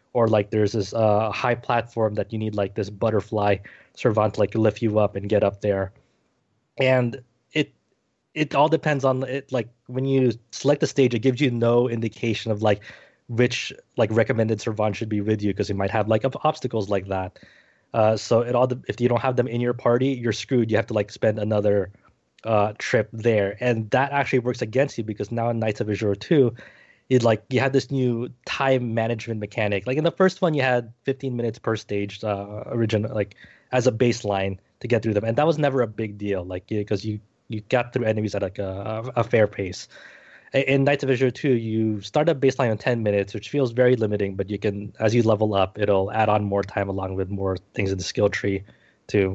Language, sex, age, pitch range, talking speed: English, male, 20-39, 105-125 Hz, 225 wpm